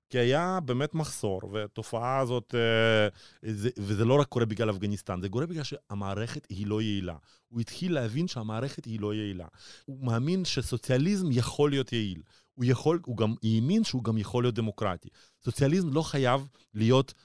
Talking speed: 165 wpm